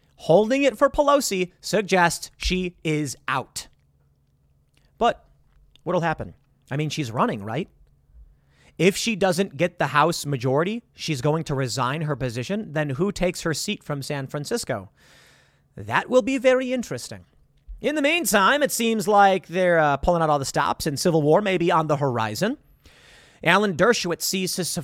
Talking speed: 155 wpm